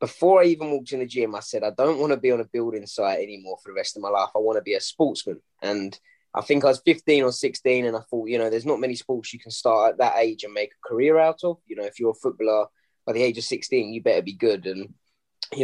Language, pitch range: English, 110-150 Hz